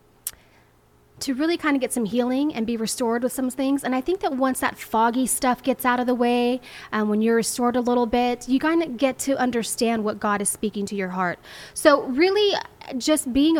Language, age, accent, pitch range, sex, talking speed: English, 20-39, American, 205-250 Hz, female, 220 wpm